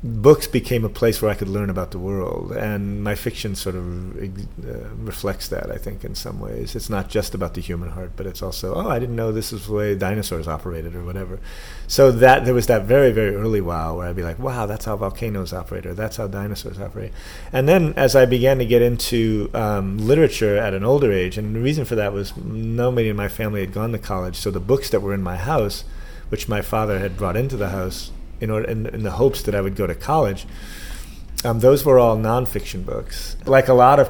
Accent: American